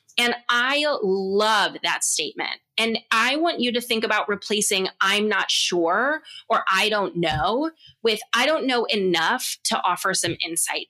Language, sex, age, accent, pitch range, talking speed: English, female, 20-39, American, 185-250 Hz, 160 wpm